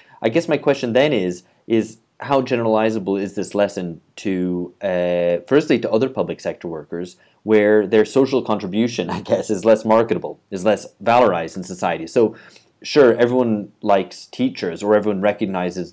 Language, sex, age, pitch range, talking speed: English, male, 30-49, 90-115 Hz, 160 wpm